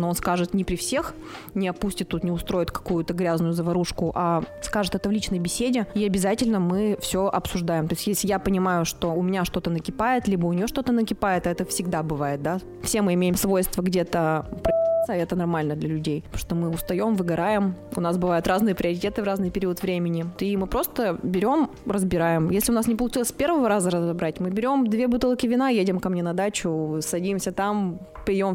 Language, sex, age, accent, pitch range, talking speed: Russian, female, 20-39, native, 175-215 Hz, 200 wpm